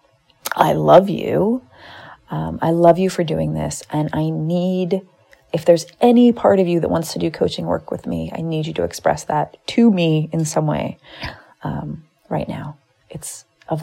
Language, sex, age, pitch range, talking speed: English, female, 30-49, 135-170 Hz, 185 wpm